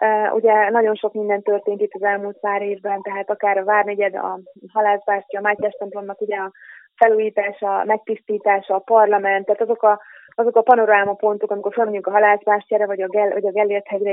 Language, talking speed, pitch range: Hungarian, 165 wpm, 195-220 Hz